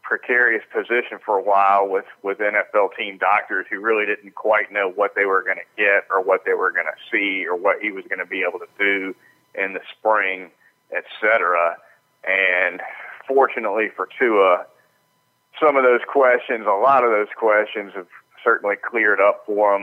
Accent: American